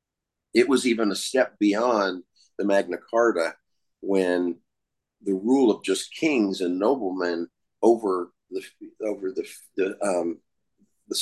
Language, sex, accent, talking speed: English, male, American, 130 wpm